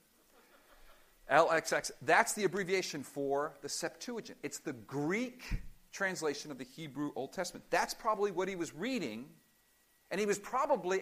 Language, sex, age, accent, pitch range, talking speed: English, male, 50-69, American, 160-215 Hz, 140 wpm